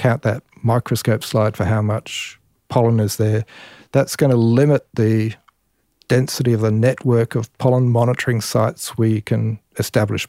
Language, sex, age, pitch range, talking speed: English, male, 40-59, 110-125 Hz, 150 wpm